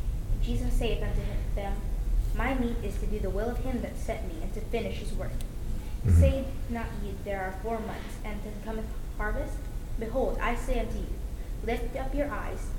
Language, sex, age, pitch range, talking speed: English, female, 20-39, 185-245 Hz, 195 wpm